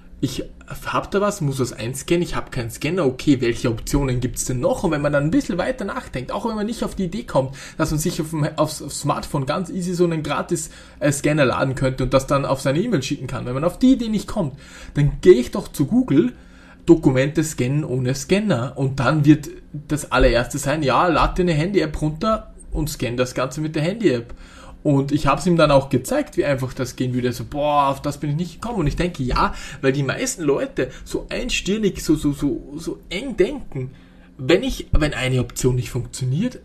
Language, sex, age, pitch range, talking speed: German, male, 20-39, 130-185 Hz, 225 wpm